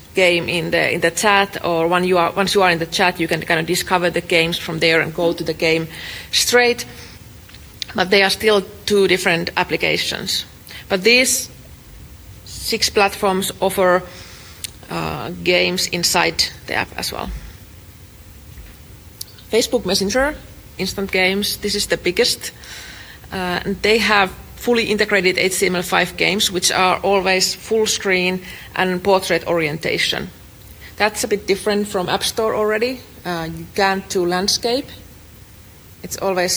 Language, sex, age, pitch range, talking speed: English, female, 30-49, 170-205 Hz, 145 wpm